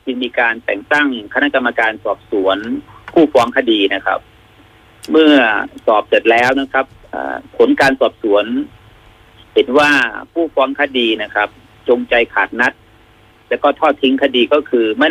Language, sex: Thai, male